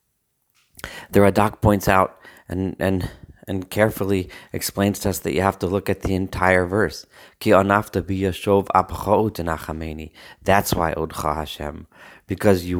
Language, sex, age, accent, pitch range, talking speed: English, male, 30-49, American, 90-100 Hz, 120 wpm